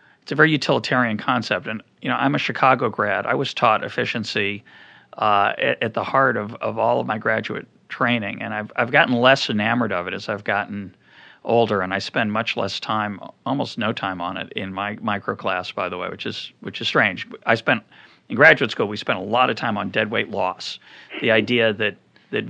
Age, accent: 40-59, American